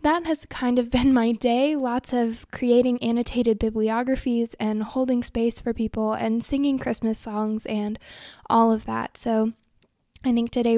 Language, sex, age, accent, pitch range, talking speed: English, female, 10-29, American, 220-245 Hz, 160 wpm